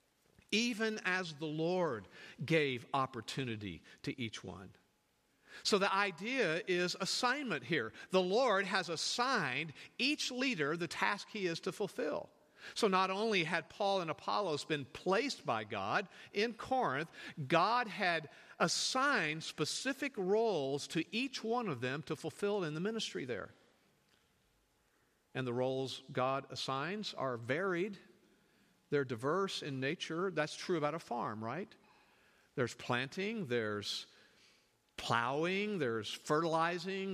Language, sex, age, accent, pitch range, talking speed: English, male, 50-69, American, 135-195 Hz, 130 wpm